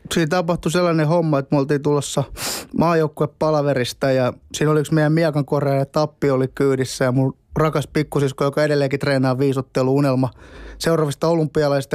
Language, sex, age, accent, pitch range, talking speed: Finnish, male, 20-39, native, 145-175 Hz, 150 wpm